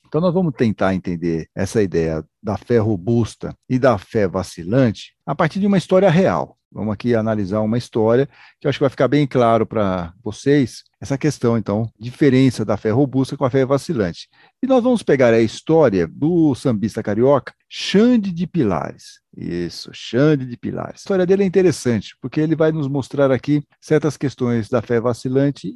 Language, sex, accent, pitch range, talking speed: Portuguese, male, Brazilian, 110-150 Hz, 180 wpm